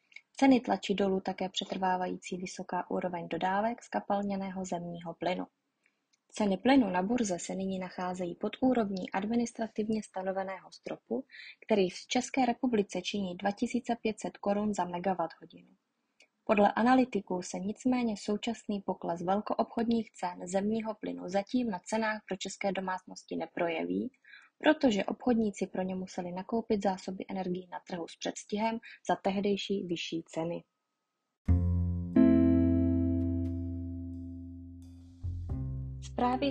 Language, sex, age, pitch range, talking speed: Czech, female, 20-39, 180-220 Hz, 110 wpm